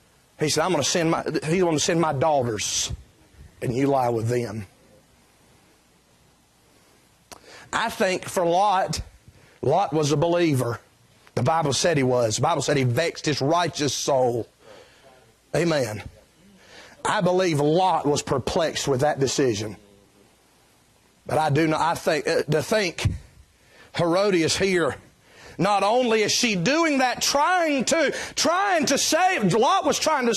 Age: 40-59